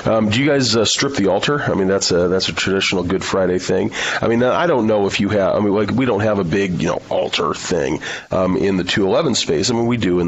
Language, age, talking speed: English, 40-59, 280 wpm